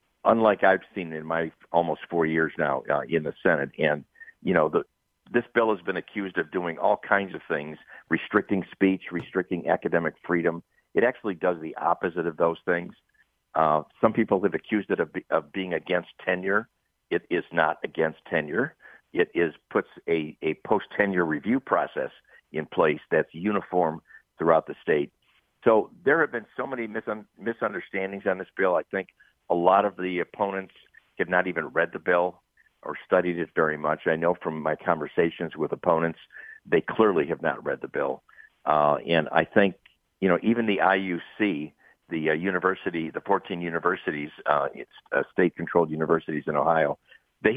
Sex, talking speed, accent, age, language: male, 175 wpm, American, 50-69, English